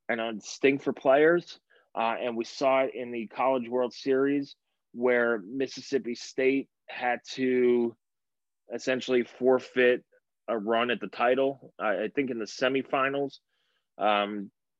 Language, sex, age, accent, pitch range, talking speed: English, male, 20-39, American, 120-140 Hz, 140 wpm